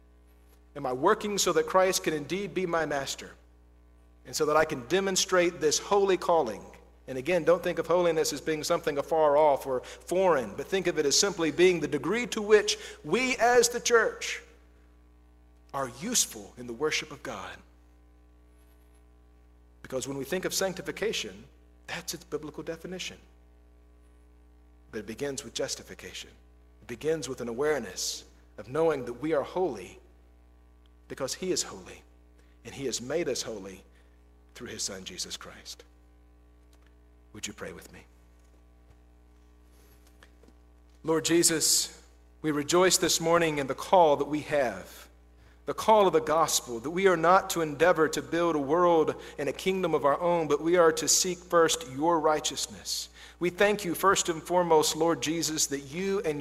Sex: male